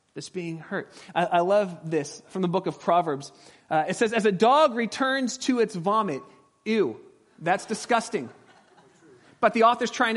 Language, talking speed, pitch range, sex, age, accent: English, 170 wpm, 185-245 Hz, male, 30-49, American